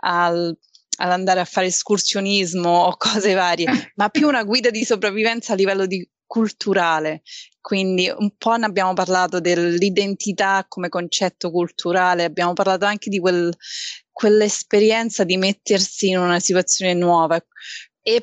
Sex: female